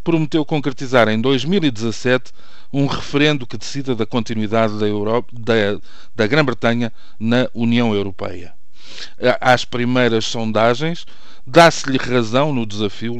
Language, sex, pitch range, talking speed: Portuguese, male, 110-145 Hz, 105 wpm